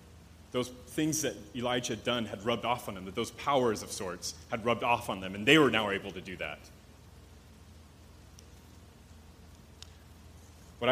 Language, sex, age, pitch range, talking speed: English, male, 30-49, 90-145 Hz, 165 wpm